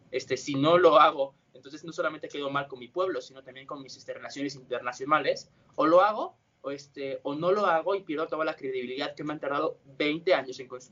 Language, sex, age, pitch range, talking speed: Spanish, male, 20-39, 135-175 Hz, 230 wpm